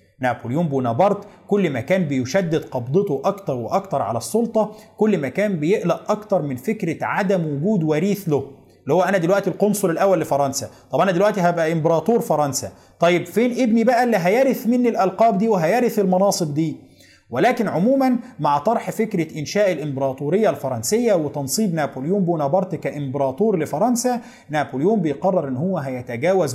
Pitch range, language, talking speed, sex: 130-195 Hz, Arabic, 145 wpm, male